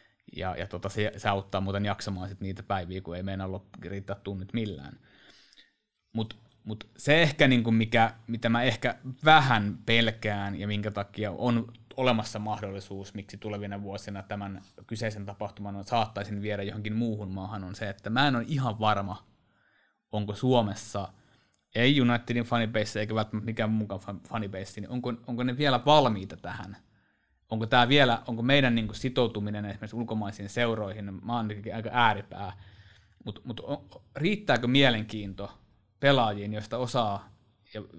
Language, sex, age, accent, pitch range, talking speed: Finnish, male, 20-39, native, 100-120 Hz, 155 wpm